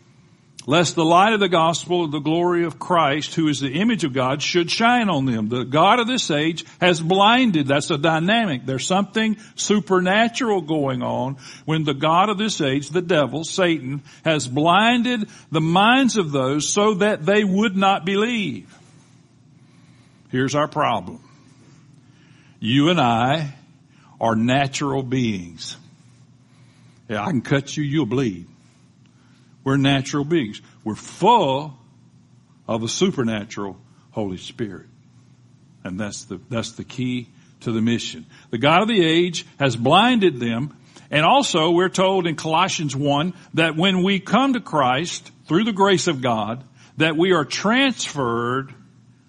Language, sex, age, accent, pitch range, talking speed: English, male, 60-79, American, 130-180 Hz, 145 wpm